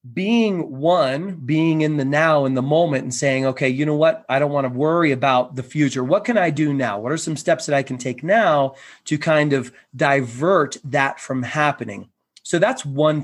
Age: 30-49